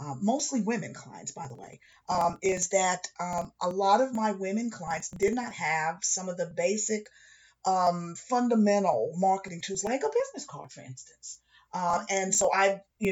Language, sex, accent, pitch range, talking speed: English, female, American, 175-230 Hz, 180 wpm